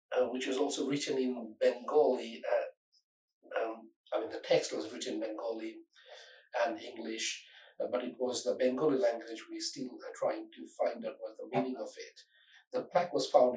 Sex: male